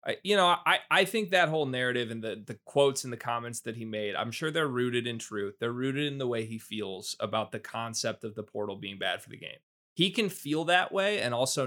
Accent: American